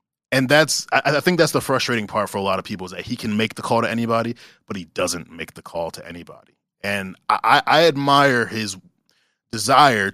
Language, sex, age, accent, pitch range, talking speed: English, male, 20-39, American, 95-130 Hz, 215 wpm